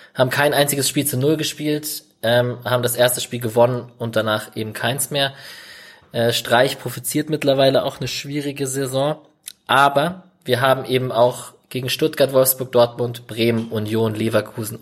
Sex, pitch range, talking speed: male, 110-145 Hz, 155 wpm